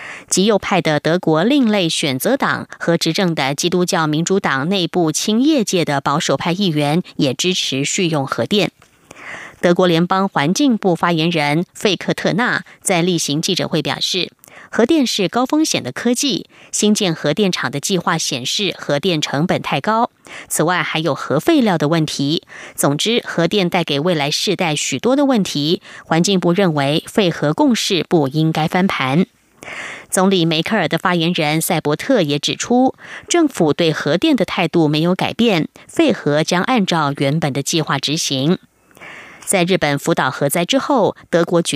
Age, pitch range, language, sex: 30-49, 150-200 Hz, German, female